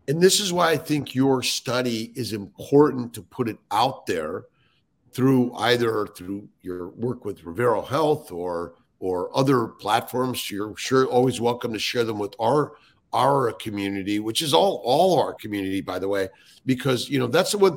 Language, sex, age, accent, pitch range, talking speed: English, male, 50-69, American, 115-145 Hz, 180 wpm